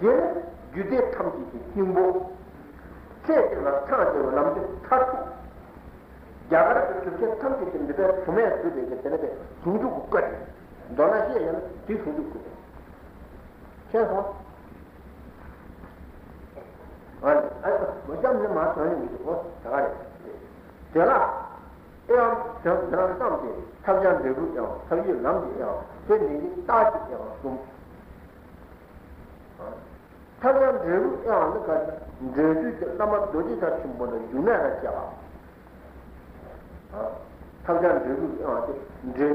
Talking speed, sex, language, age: 55 wpm, male, Italian, 60-79